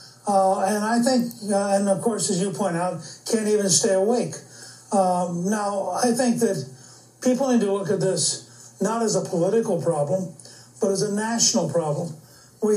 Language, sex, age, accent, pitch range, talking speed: English, male, 60-79, American, 175-220 Hz, 180 wpm